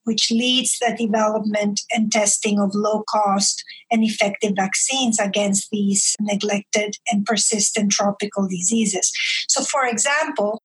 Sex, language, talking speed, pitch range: female, English, 125 wpm, 210-245 Hz